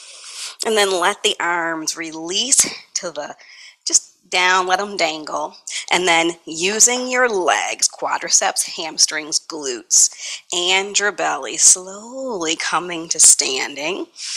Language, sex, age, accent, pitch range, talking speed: English, female, 30-49, American, 170-240 Hz, 115 wpm